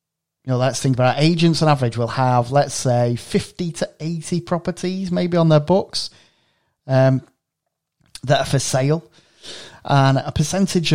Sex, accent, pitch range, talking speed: male, British, 115-140 Hz, 155 wpm